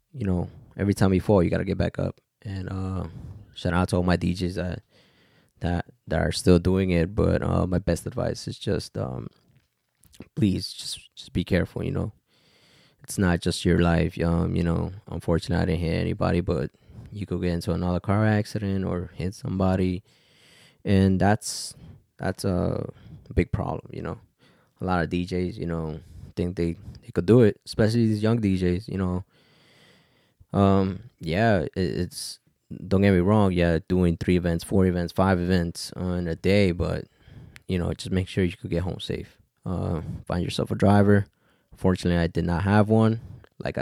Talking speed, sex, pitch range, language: 180 wpm, male, 85-100 Hz, English